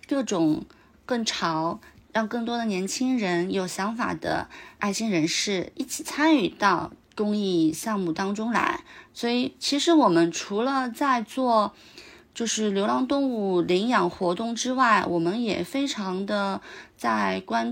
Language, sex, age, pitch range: Chinese, female, 30-49, 175-230 Hz